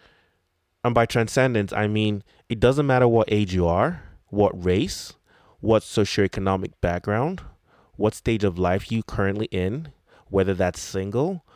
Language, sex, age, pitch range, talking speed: English, male, 20-39, 90-115 Hz, 140 wpm